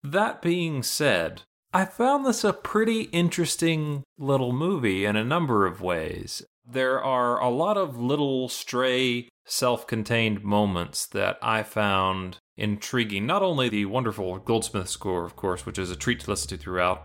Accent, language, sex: American, English, male